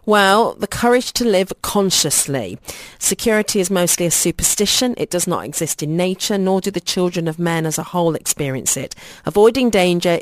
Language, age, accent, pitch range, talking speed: English, 40-59, British, 150-190 Hz, 175 wpm